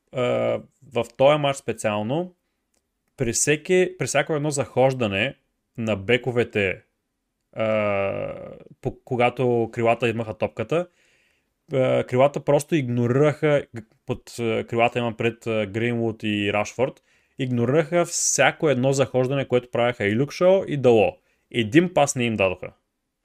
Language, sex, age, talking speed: Bulgarian, male, 30-49, 120 wpm